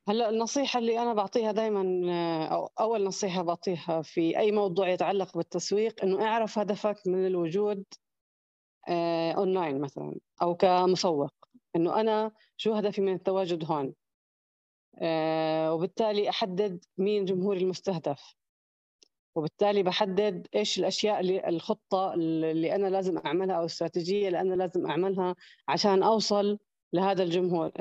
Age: 30-49